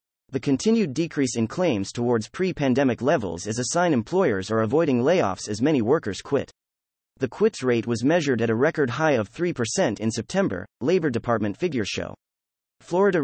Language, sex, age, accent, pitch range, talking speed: English, male, 30-49, American, 105-155 Hz, 170 wpm